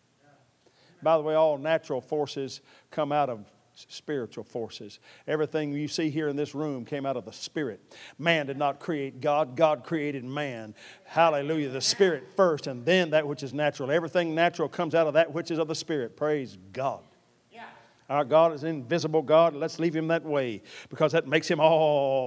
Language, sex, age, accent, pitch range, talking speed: English, male, 50-69, American, 120-150 Hz, 185 wpm